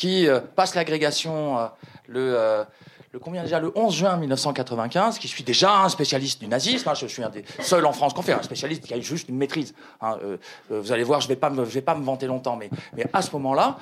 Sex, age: male, 40-59